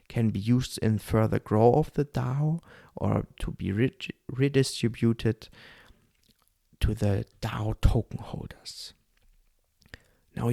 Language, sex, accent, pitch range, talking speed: German, male, German, 110-130 Hz, 115 wpm